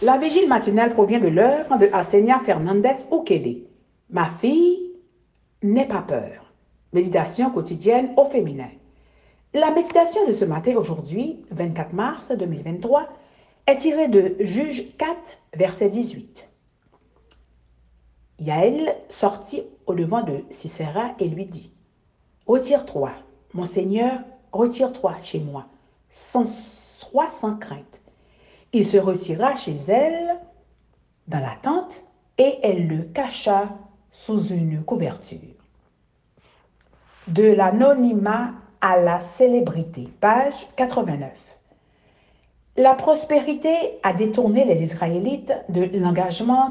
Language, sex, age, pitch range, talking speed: French, female, 60-79, 180-265 Hz, 115 wpm